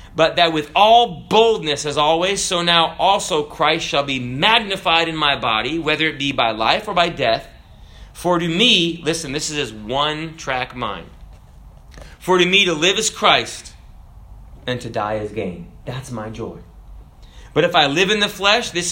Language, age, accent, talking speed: English, 30-49, American, 185 wpm